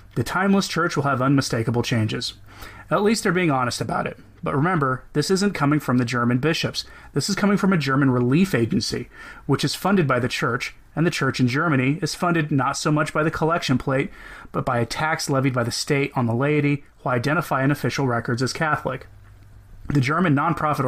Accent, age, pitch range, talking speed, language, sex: American, 30-49, 120-150 Hz, 205 wpm, English, male